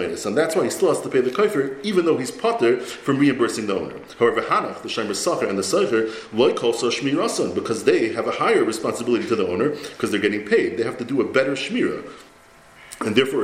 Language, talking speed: English, 230 wpm